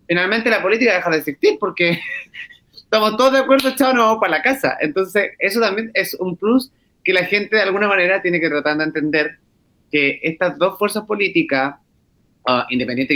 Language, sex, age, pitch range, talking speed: Spanish, male, 30-49, 145-200 Hz, 185 wpm